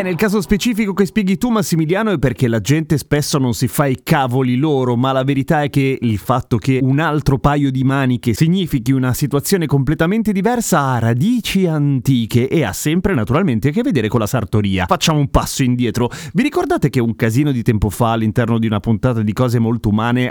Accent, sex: native, male